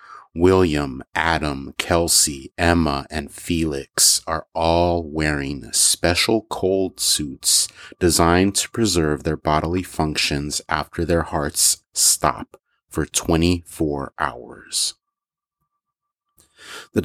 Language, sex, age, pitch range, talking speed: English, male, 30-49, 80-95 Hz, 90 wpm